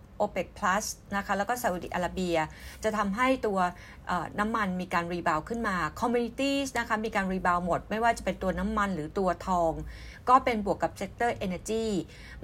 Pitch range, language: 180-220 Hz, Thai